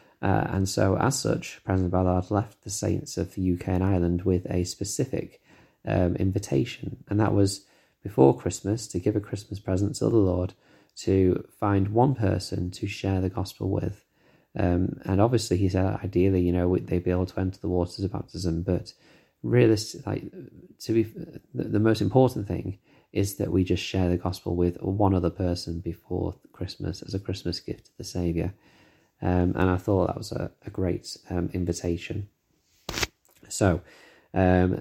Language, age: English, 20-39